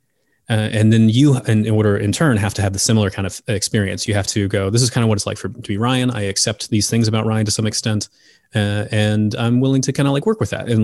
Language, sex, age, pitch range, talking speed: English, male, 30-49, 100-115 Hz, 290 wpm